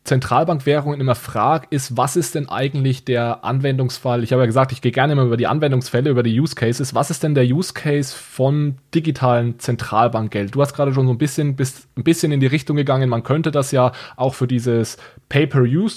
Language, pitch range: German, 125-155 Hz